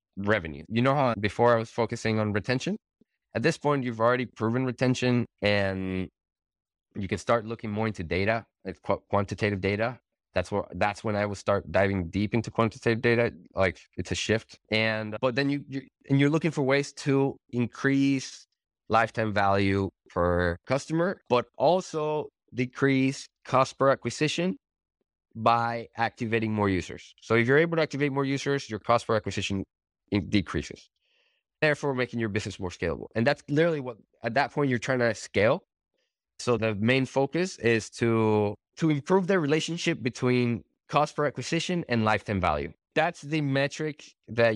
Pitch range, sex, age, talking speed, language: 105-135 Hz, male, 20-39, 165 wpm, English